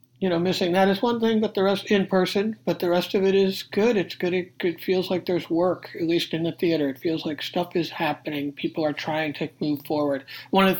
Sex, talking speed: male, 260 wpm